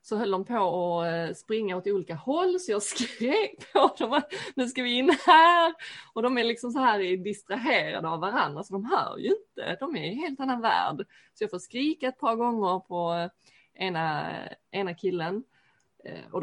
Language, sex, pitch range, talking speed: Swedish, female, 185-305 Hz, 185 wpm